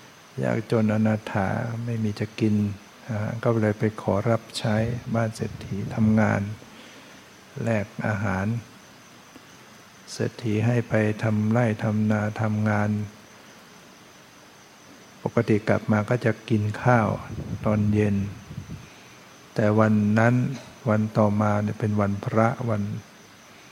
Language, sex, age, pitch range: English, male, 60-79, 105-120 Hz